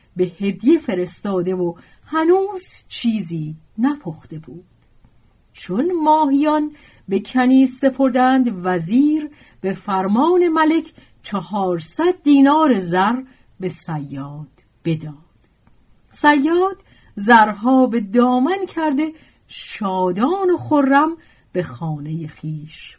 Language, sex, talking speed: Persian, female, 90 wpm